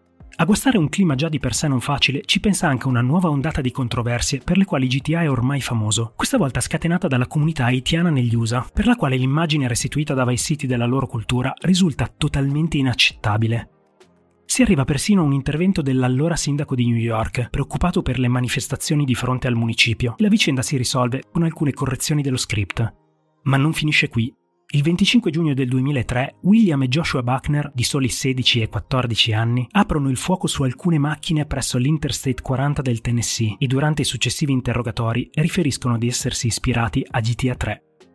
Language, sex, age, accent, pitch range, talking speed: Italian, male, 30-49, native, 120-155 Hz, 185 wpm